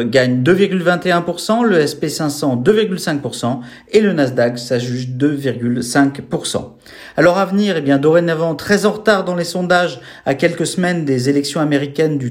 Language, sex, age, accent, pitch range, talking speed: French, male, 40-59, French, 140-185 Hz, 150 wpm